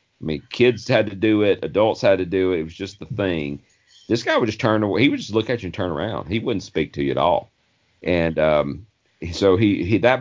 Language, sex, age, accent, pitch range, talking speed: English, male, 40-59, American, 80-100 Hz, 265 wpm